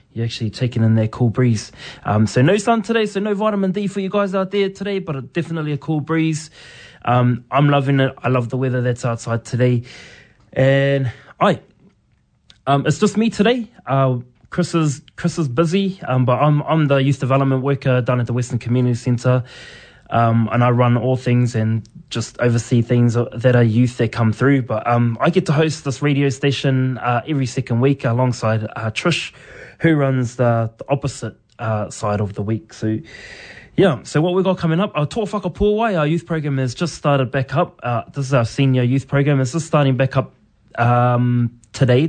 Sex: male